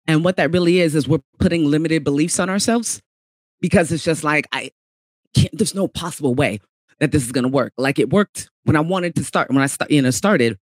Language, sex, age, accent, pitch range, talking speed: English, female, 30-49, American, 135-165 Hz, 220 wpm